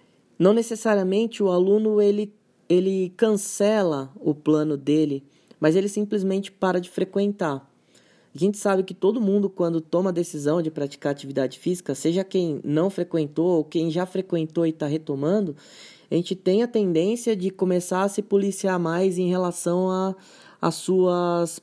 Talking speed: 155 wpm